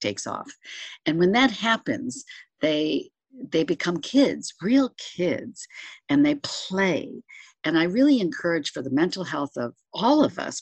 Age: 60-79